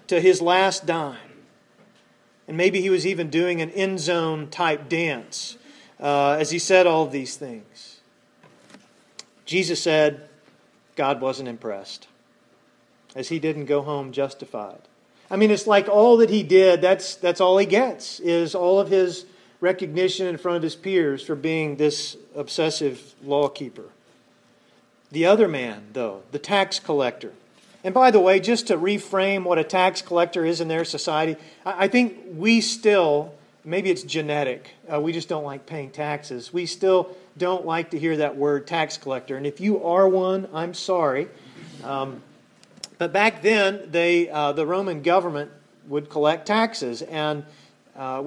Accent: American